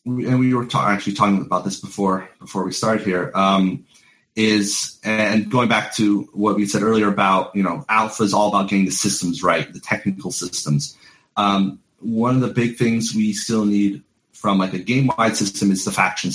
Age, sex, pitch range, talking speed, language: 30-49, male, 95-110 Hz, 200 wpm, English